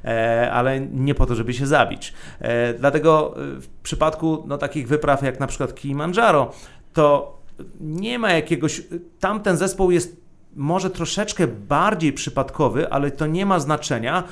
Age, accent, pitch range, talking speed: 30-49, native, 135-170 Hz, 140 wpm